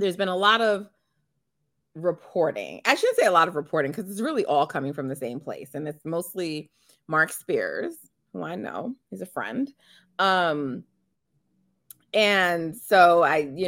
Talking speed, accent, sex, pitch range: 165 wpm, American, female, 140-185 Hz